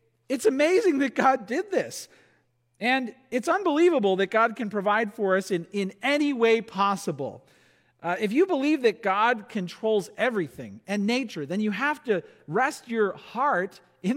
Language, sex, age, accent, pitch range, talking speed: English, male, 40-59, American, 175-240 Hz, 160 wpm